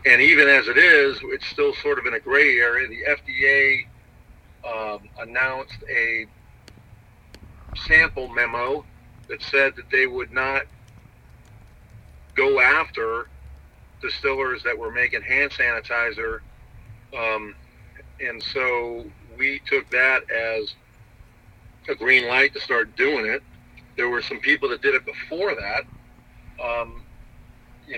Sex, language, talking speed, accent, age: male, English, 125 wpm, American, 50-69